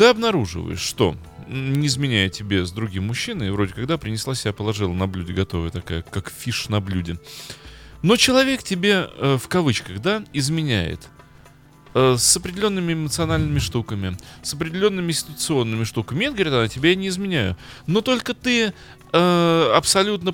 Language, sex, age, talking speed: Russian, male, 30-49, 140 wpm